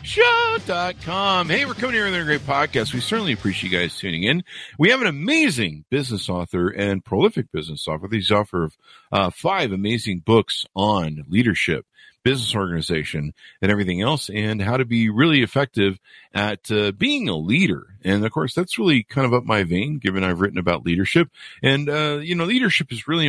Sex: male